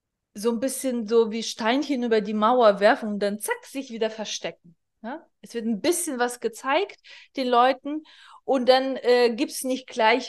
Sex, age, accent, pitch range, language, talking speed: female, 20-39, German, 210-255 Hz, German, 185 wpm